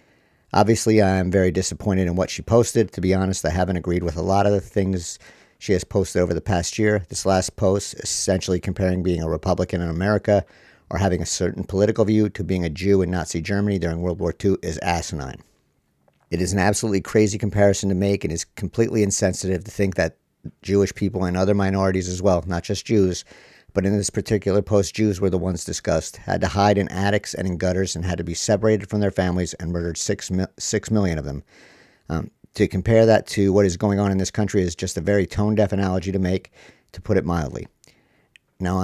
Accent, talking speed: American, 220 wpm